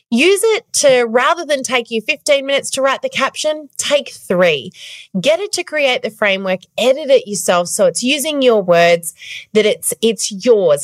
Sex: female